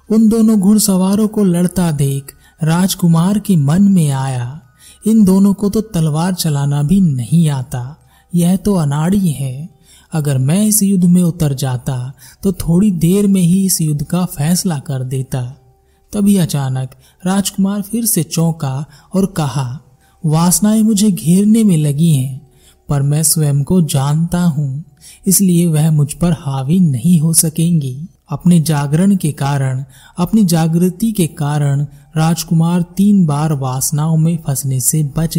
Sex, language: male, Hindi